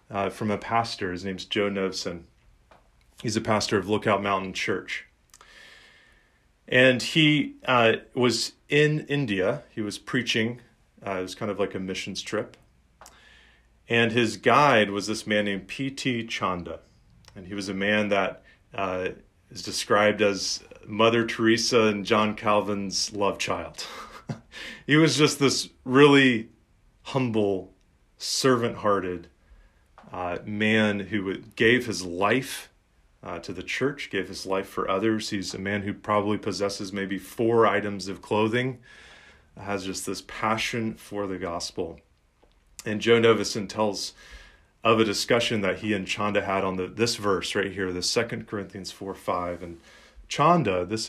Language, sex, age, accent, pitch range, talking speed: English, male, 30-49, American, 95-115 Hz, 150 wpm